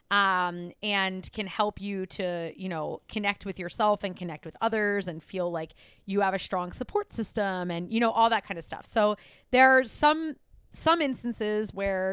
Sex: female